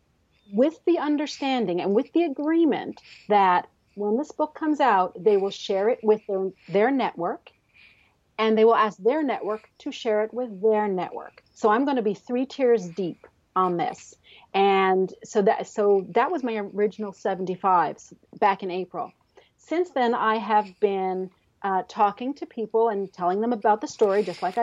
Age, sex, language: 40-59, female, English